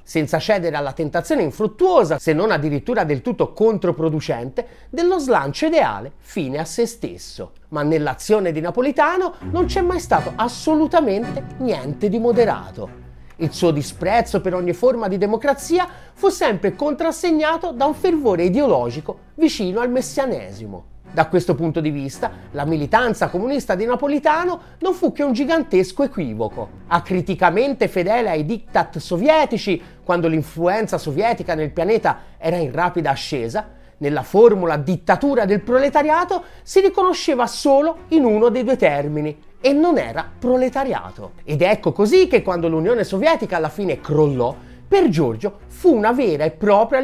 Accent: native